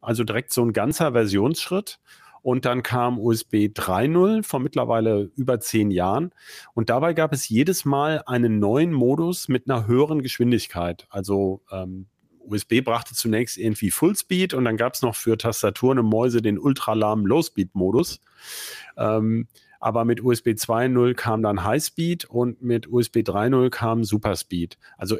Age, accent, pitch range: 40-59, German, 110-130 Hz